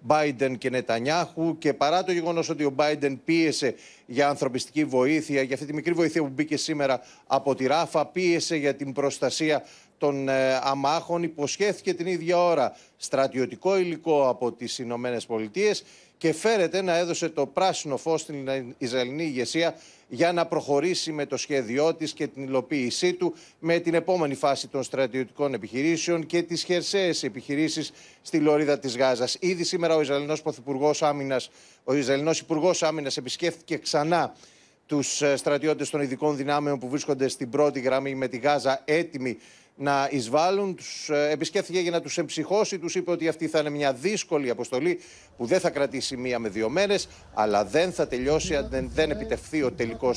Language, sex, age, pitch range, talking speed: Greek, male, 40-59, 130-165 Hz, 165 wpm